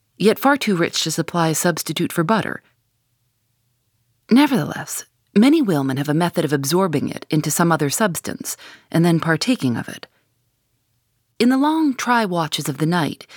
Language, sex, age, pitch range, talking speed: English, female, 40-59, 135-210 Hz, 160 wpm